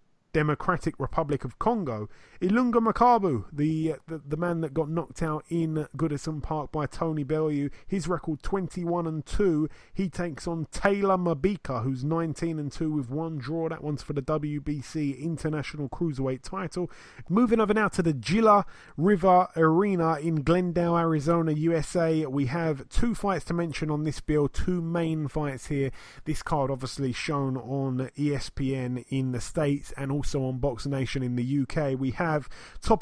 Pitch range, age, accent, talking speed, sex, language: 140-170 Hz, 30-49, British, 165 wpm, male, English